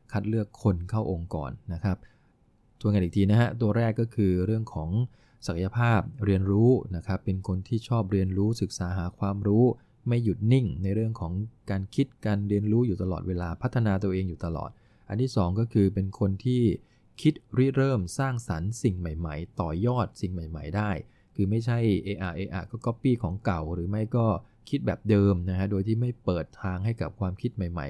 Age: 20-39